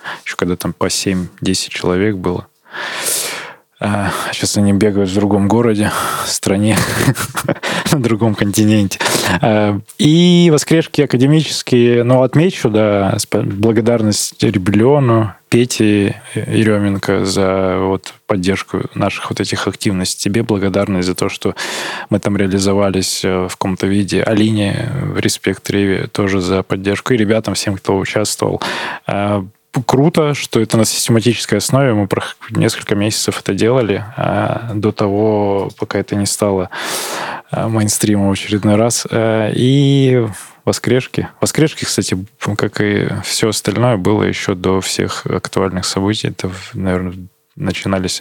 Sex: male